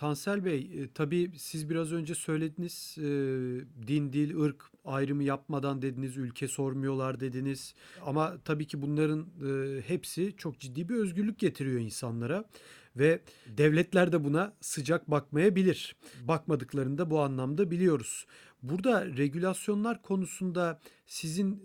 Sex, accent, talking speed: male, native, 120 wpm